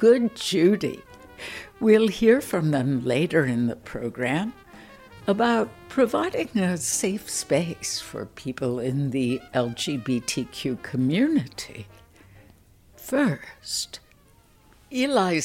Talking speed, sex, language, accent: 90 wpm, female, English, American